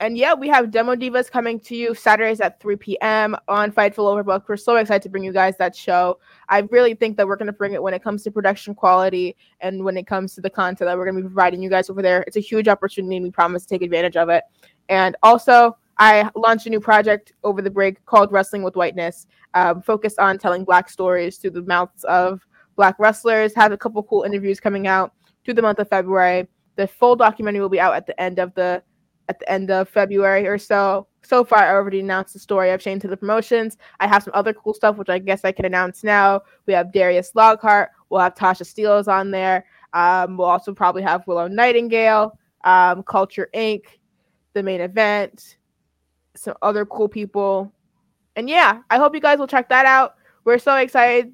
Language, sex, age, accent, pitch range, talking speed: English, female, 20-39, American, 185-220 Hz, 220 wpm